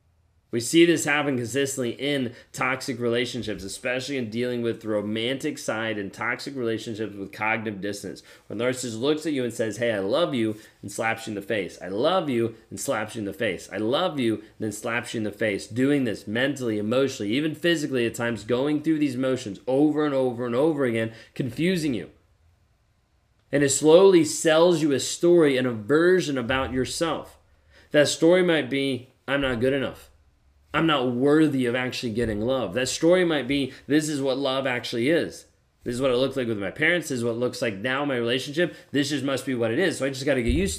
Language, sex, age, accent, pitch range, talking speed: English, male, 30-49, American, 115-150 Hz, 215 wpm